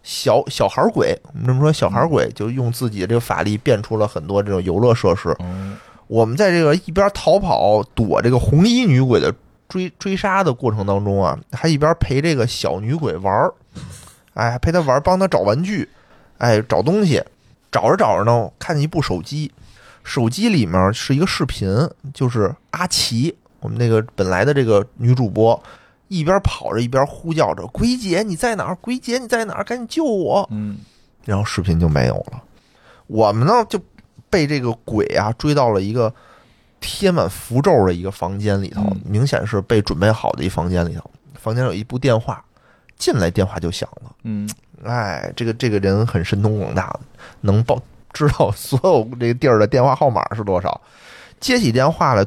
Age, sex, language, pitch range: 20-39, male, Chinese, 105-155 Hz